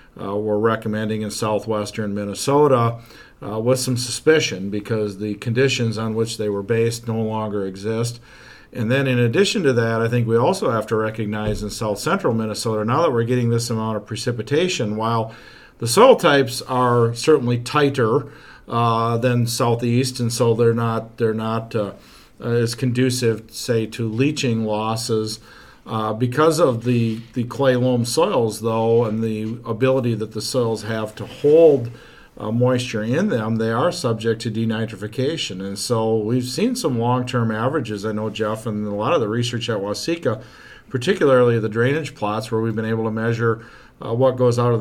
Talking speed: 175 wpm